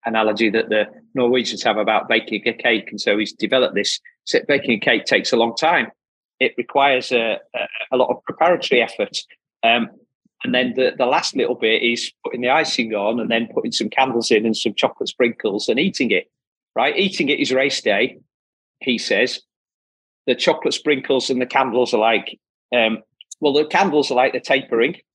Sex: male